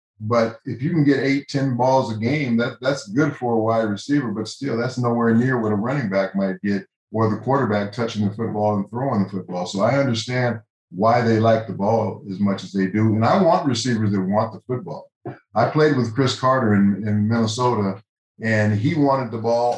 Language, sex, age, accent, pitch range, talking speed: English, male, 50-69, American, 105-125 Hz, 215 wpm